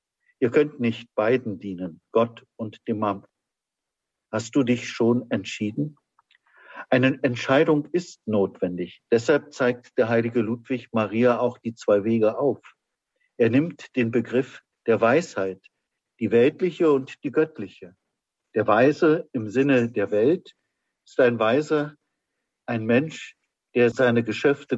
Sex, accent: male, German